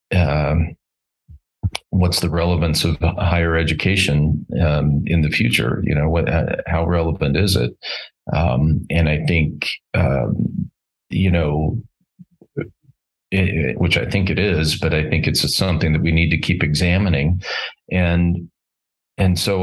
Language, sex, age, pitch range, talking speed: English, male, 40-59, 75-90 Hz, 135 wpm